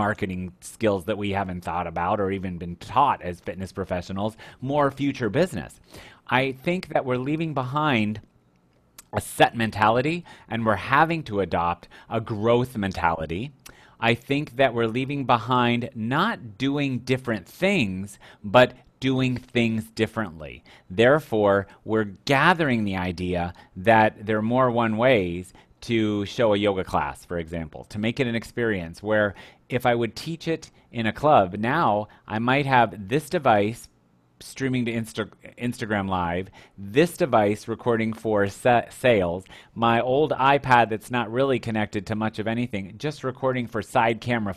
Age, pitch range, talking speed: 30-49, 100-130 Hz, 150 wpm